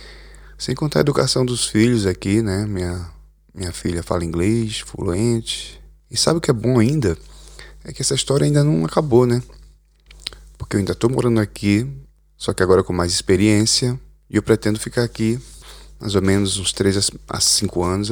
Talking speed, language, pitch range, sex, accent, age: 180 wpm, Portuguese, 85-110 Hz, male, Brazilian, 20-39